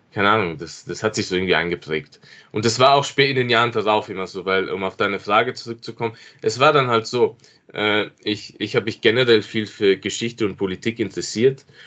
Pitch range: 100-130 Hz